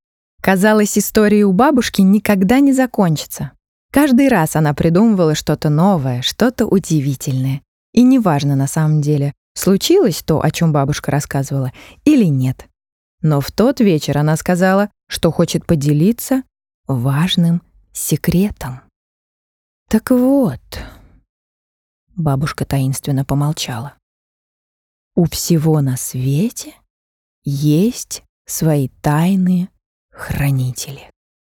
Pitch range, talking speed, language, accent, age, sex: 140-210 Hz, 100 wpm, Russian, native, 20-39, female